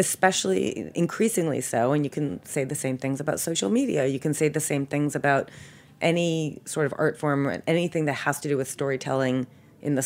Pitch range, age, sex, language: 130-160 Hz, 30-49, female, English